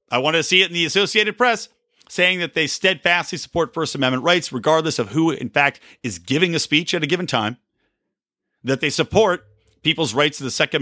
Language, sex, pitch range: English, male, 115-165 Hz